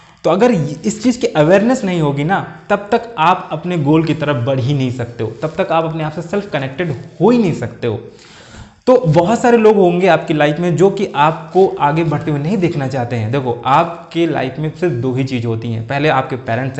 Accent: native